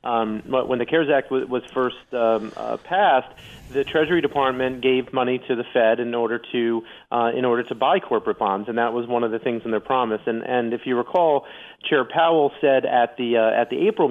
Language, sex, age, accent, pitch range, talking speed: English, male, 40-59, American, 110-130 Hz, 230 wpm